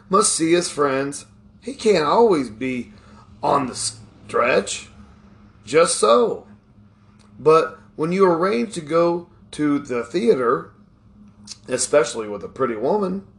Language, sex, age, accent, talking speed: English, male, 40-59, American, 120 wpm